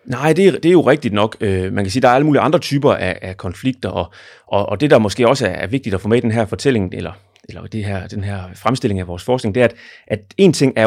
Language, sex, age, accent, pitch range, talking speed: Danish, male, 30-49, native, 95-125 Hz, 305 wpm